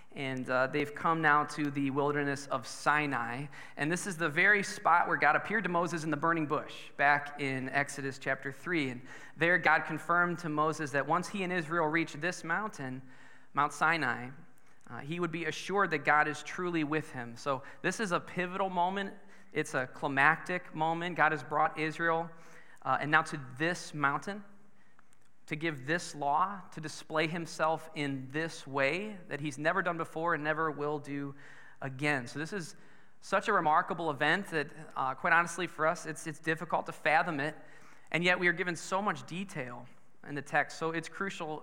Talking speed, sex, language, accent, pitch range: 185 wpm, male, English, American, 145-175 Hz